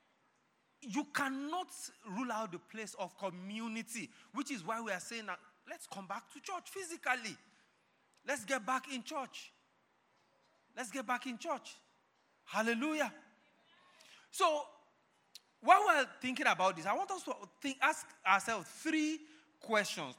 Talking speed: 145 wpm